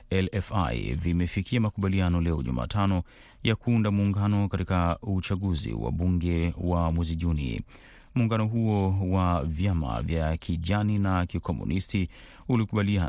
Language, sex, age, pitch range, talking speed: Swahili, male, 30-49, 85-105 Hz, 105 wpm